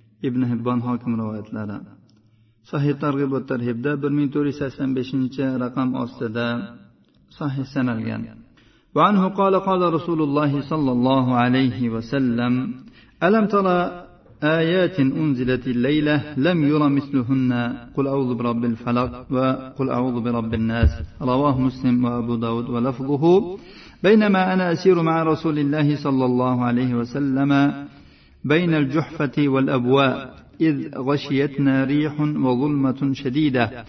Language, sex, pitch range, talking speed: Russian, male, 125-155 Hz, 110 wpm